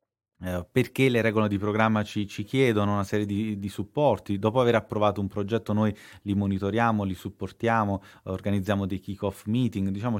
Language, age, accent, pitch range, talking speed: Italian, 30-49, native, 95-115 Hz, 170 wpm